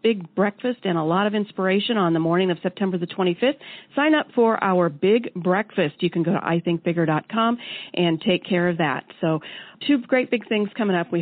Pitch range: 175-230 Hz